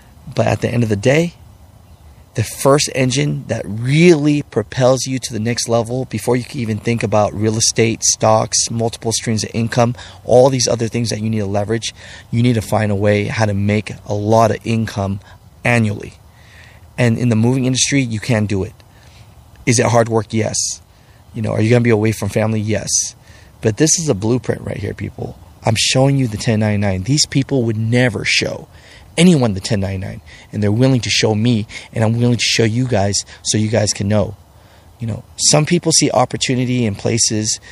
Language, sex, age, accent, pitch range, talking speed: English, male, 30-49, American, 105-125 Hz, 200 wpm